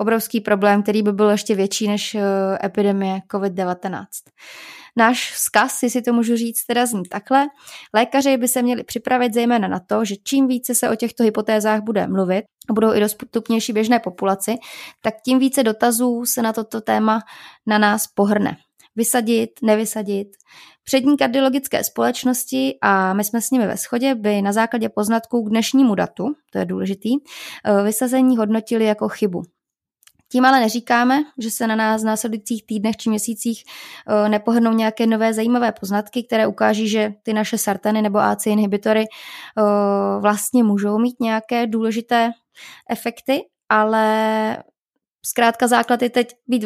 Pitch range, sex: 210-240 Hz, female